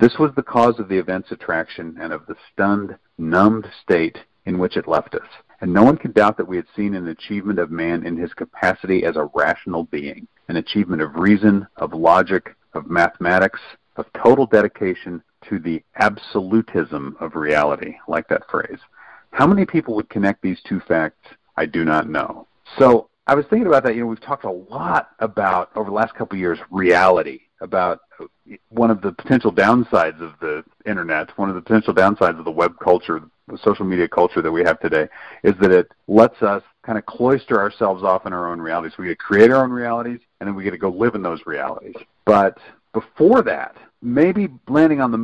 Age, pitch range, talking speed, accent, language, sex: 50-69, 90-110 Hz, 205 wpm, American, English, male